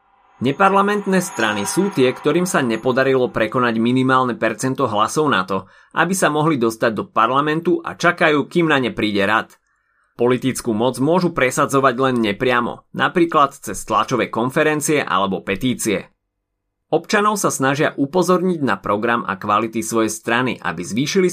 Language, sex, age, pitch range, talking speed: Slovak, male, 30-49, 115-165 Hz, 140 wpm